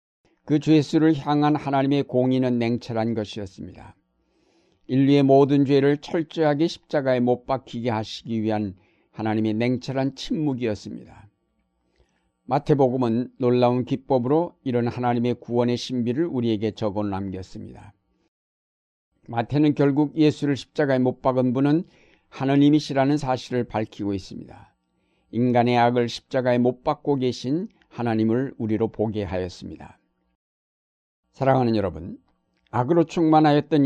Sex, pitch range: male, 110-140 Hz